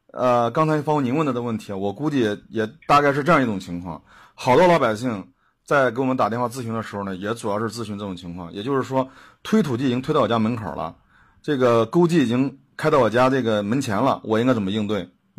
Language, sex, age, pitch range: Chinese, male, 30-49, 100-130 Hz